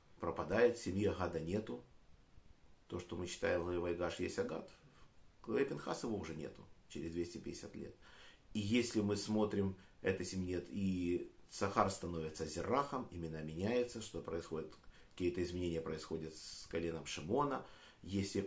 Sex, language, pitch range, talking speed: male, Russian, 85-105 Hz, 135 wpm